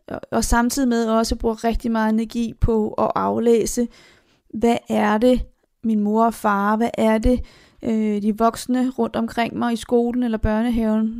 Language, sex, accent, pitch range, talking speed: Danish, female, native, 215-245 Hz, 165 wpm